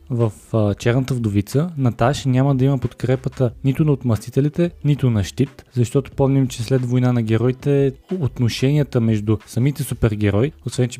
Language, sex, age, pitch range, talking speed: Bulgarian, male, 20-39, 115-140 Hz, 145 wpm